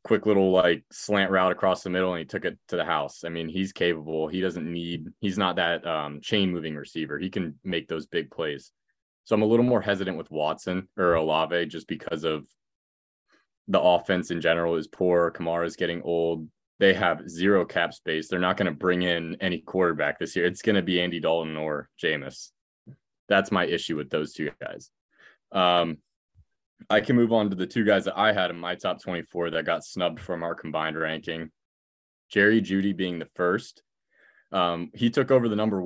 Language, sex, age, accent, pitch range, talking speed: English, male, 20-39, American, 85-105 Hz, 205 wpm